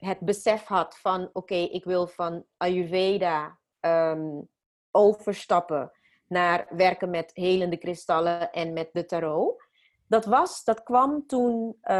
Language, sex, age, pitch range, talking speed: Dutch, female, 30-49, 165-205 Hz, 115 wpm